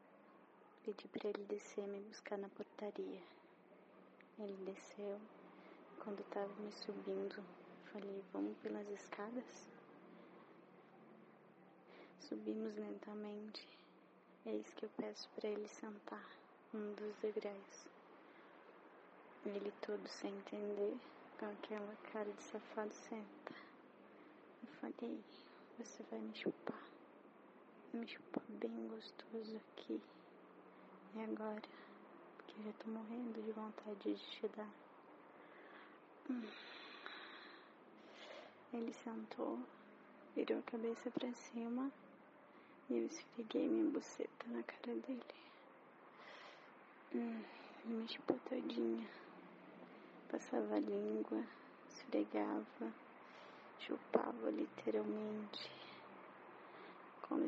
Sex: female